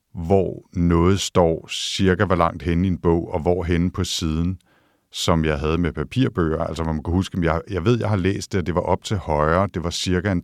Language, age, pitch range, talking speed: Danish, 50-69, 75-90 Hz, 230 wpm